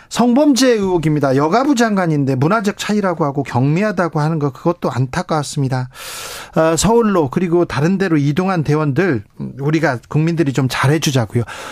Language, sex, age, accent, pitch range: Korean, male, 40-59, native, 145-205 Hz